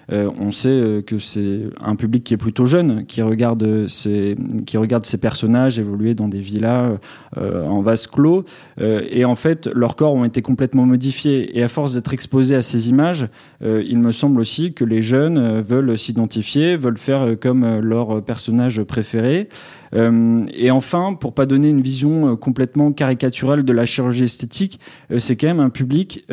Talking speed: 180 wpm